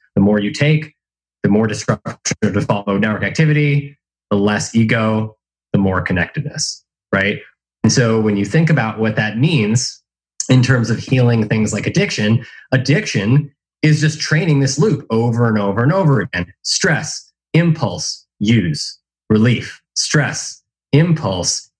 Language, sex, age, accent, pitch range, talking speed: English, male, 20-39, American, 105-140 Hz, 145 wpm